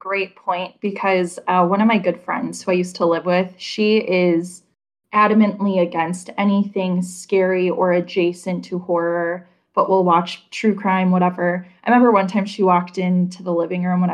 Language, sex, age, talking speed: English, female, 10-29, 180 wpm